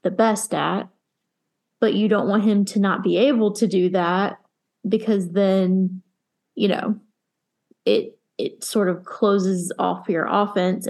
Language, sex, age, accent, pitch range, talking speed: English, female, 20-39, American, 195-220 Hz, 150 wpm